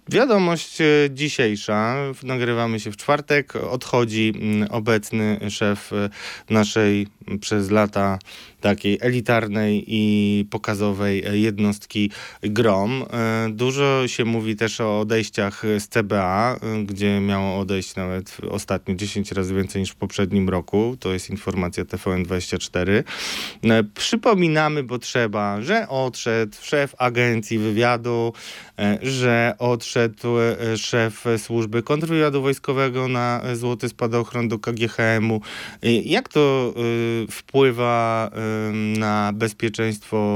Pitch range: 105-135 Hz